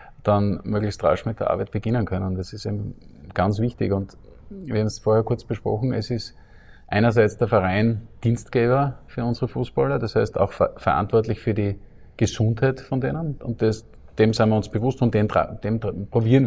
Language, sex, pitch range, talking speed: German, male, 105-120 Hz, 180 wpm